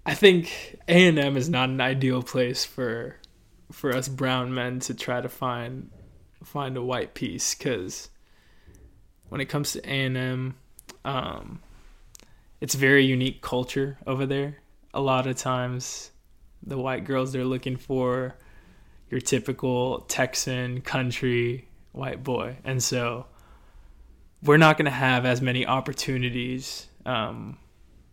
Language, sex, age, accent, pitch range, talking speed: English, male, 20-39, American, 125-135 Hz, 130 wpm